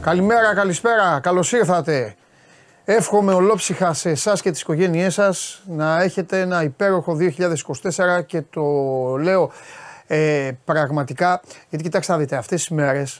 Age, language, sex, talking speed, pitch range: 30-49, Greek, male, 135 wpm, 140-175 Hz